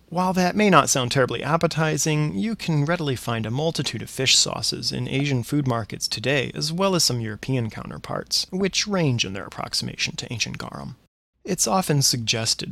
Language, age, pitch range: English, 30-49, 115-155 Hz